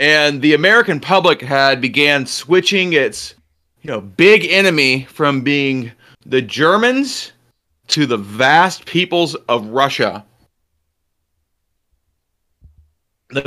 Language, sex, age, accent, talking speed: English, male, 30-49, American, 100 wpm